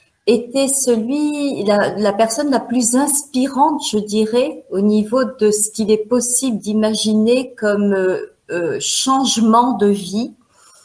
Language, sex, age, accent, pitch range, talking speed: French, female, 40-59, French, 195-250 Hz, 135 wpm